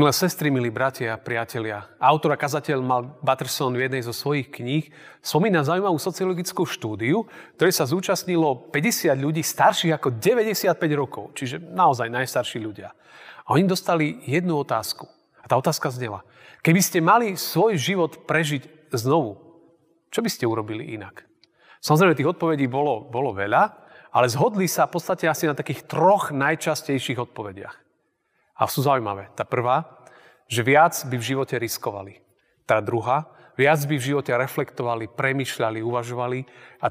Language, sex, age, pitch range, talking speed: Slovak, male, 30-49, 125-165 Hz, 150 wpm